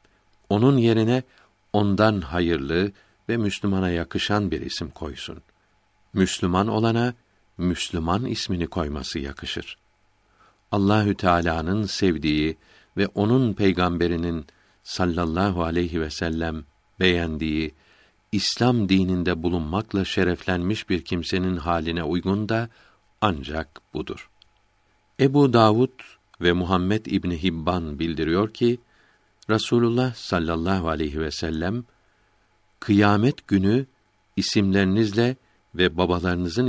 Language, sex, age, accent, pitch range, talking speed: Turkish, male, 60-79, native, 85-105 Hz, 95 wpm